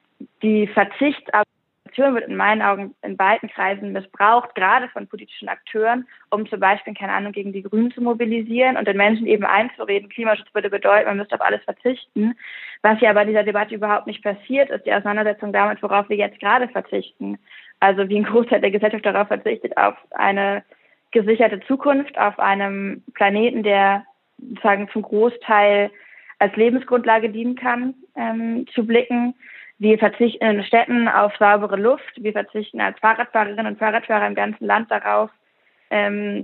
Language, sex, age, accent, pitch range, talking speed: German, female, 20-39, German, 205-245 Hz, 160 wpm